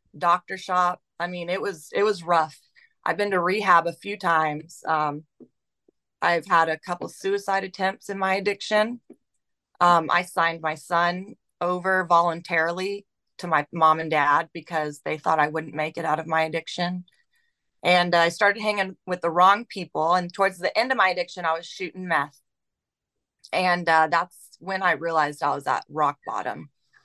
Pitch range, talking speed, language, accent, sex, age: 160-195 Hz, 175 wpm, English, American, female, 30-49